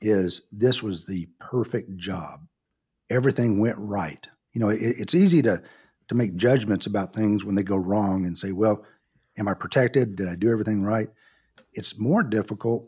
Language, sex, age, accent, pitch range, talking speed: English, male, 50-69, American, 100-120 Hz, 175 wpm